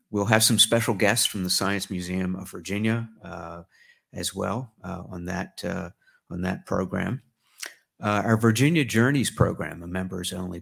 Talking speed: 160 wpm